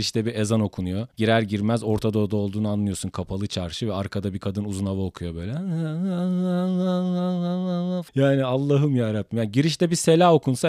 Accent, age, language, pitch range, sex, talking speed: native, 40-59, Turkish, 115-145 Hz, male, 155 wpm